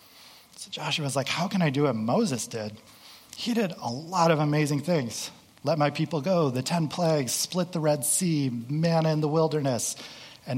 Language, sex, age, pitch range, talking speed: English, male, 30-49, 120-145 Hz, 195 wpm